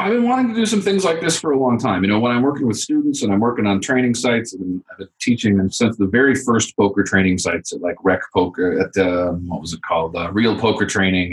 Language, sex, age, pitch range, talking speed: English, male, 30-49, 95-115 Hz, 275 wpm